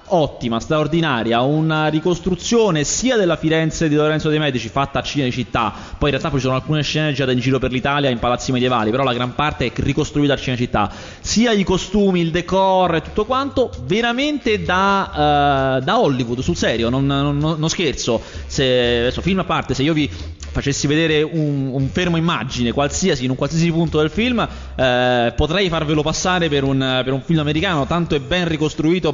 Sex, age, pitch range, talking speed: male, 30-49, 120-165 Hz, 185 wpm